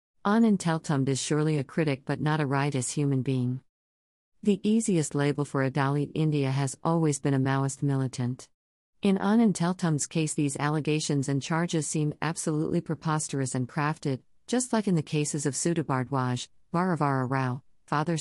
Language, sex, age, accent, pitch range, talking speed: English, female, 50-69, American, 130-155 Hz, 160 wpm